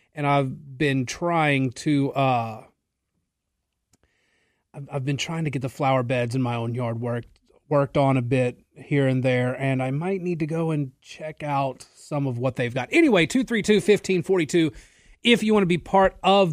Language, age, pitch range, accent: English, 30-49, 130-175 Hz, American